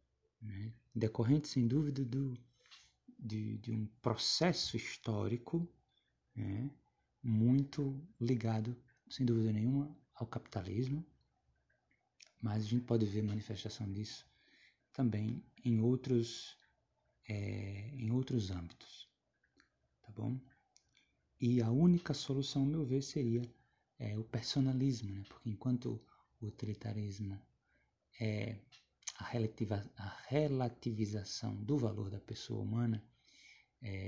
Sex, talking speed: male, 95 wpm